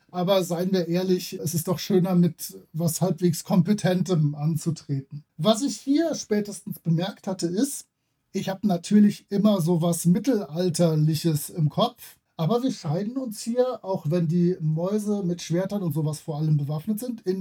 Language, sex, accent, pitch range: German, male, German, 165-210 Hz